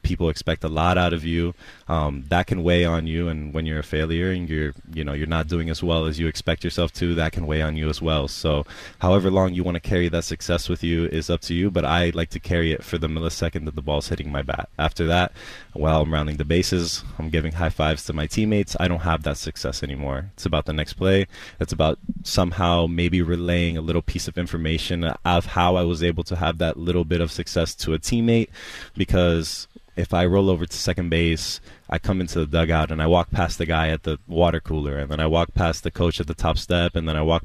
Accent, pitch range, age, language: American, 80-90 Hz, 20-39, English